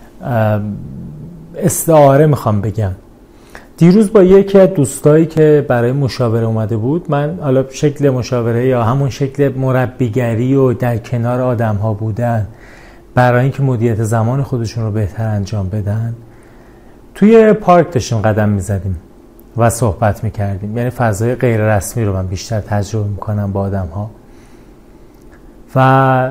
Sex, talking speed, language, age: male, 125 wpm, Persian, 30-49